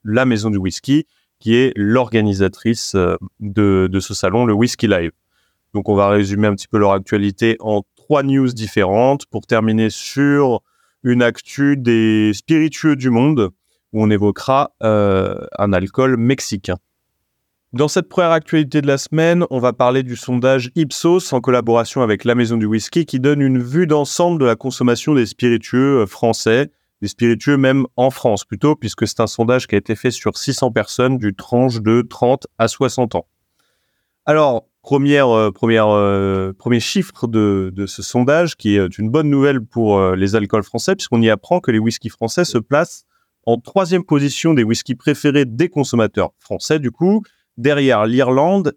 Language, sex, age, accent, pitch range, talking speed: French, male, 30-49, French, 110-140 Hz, 175 wpm